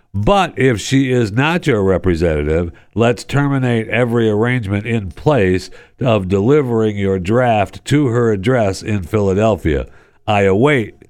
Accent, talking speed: American, 130 wpm